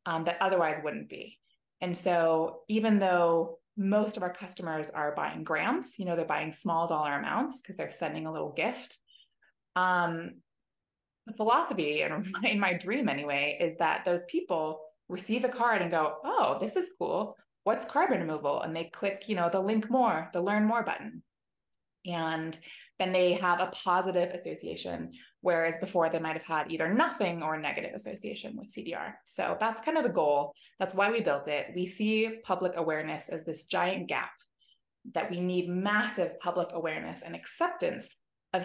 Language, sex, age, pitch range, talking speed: English, female, 20-39, 165-210 Hz, 175 wpm